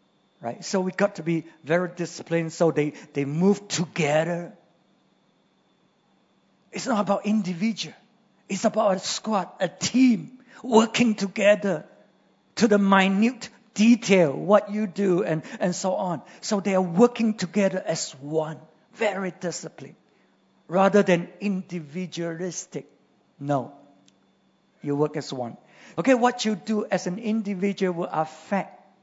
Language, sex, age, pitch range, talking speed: English, male, 50-69, 170-220 Hz, 130 wpm